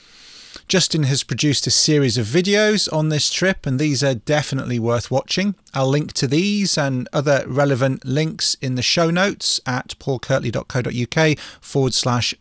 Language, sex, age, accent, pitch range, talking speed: English, male, 30-49, British, 120-150 Hz, 155 wpm